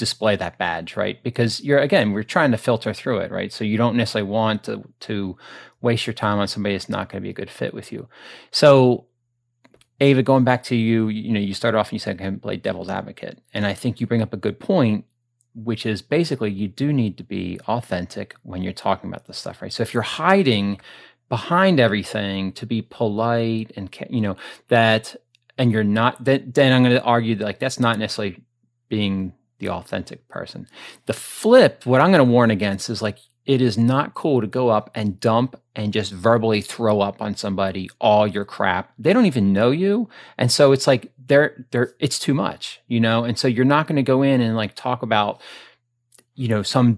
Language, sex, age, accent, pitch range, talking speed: English, male, 30-49, American, 105-125 Hz, 220 wpm